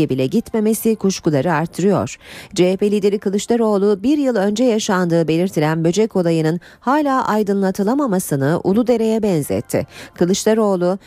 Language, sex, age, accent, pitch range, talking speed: Turkish, female, 40-59, native, 170-235 Hz, 110 wpm